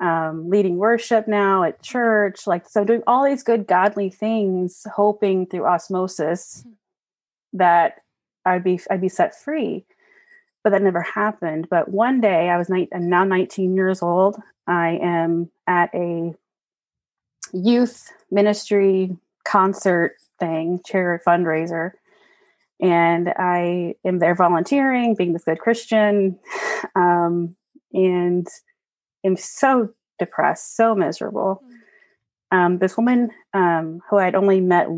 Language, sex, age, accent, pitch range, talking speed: English, female, 30-49, American, 170-210 Hz, 125 wpm